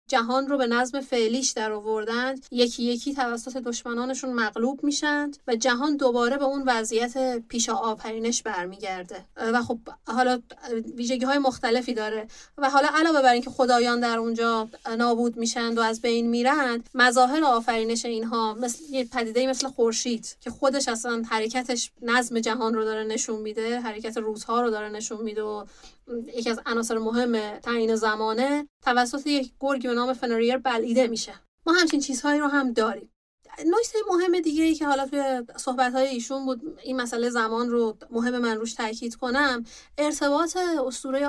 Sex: female